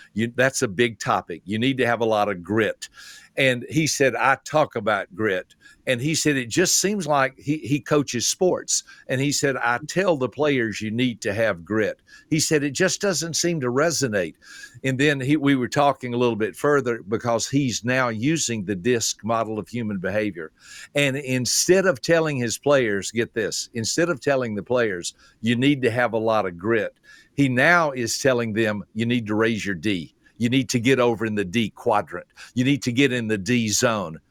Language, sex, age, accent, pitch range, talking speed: English, male, 60-79, American, 115-145 Hz, 205 wpm